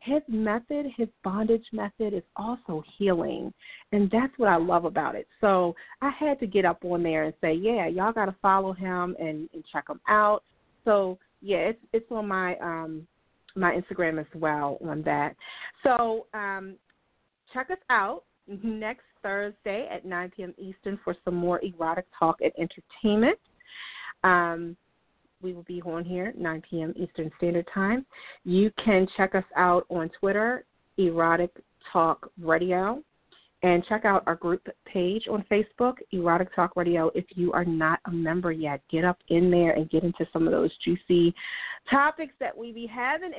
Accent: American